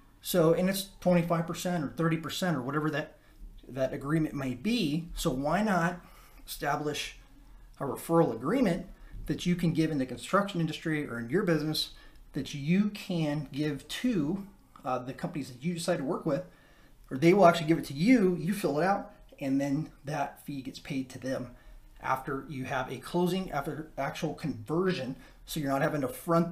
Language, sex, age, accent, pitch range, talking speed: English, male, 30-49, American, 140-175 Hz, 180 wpm